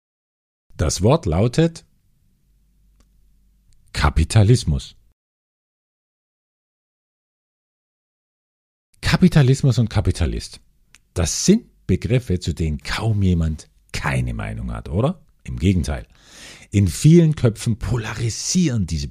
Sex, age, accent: male, 50-69, German